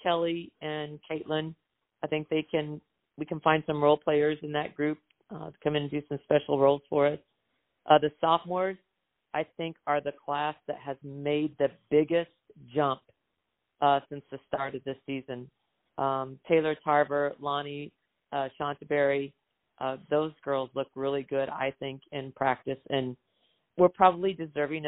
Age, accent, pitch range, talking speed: 40-59, American, 140-155 Hz, 160 wpm